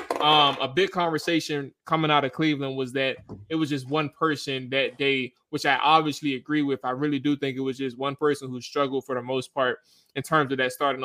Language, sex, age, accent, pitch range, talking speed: English, male, 20-39, American, 140-165 Hz, 230 wpm